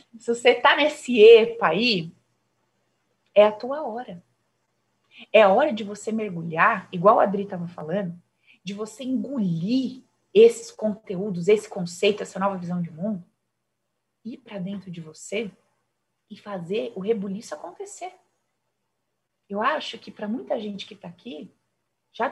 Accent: Brazilian